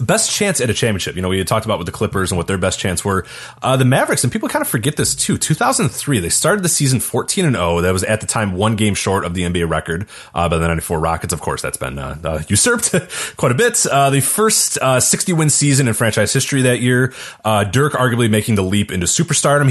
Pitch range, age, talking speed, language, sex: 95-135 Hz, 30-49, 260 wpm, English, male